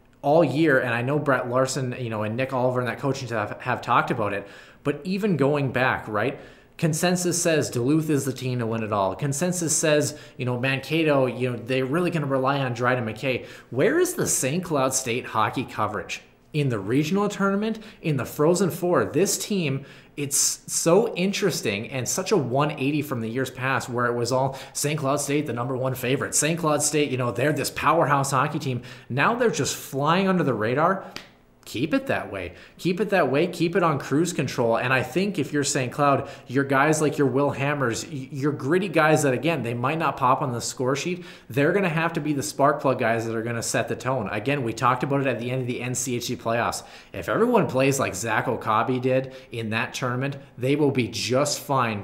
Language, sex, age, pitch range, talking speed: English, male, 20-39, 120-150 Hz, 220 wpm